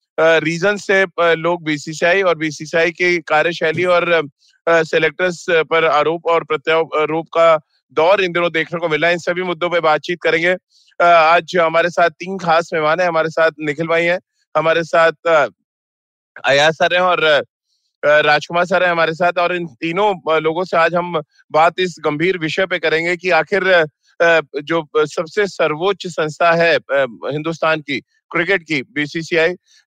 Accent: native